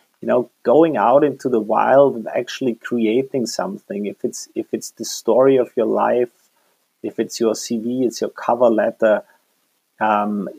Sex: male